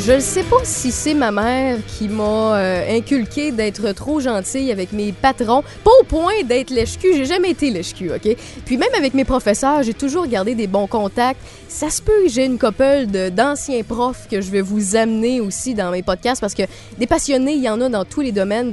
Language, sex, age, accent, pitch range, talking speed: French, female, 20-39, Canadian, 205-275 Hz, 225 wpm